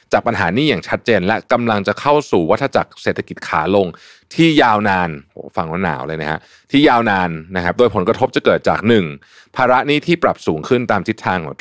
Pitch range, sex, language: 90-130 Hz, male, Thai